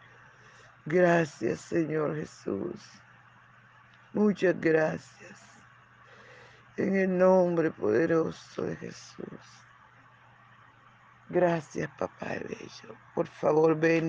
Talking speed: 70 wpm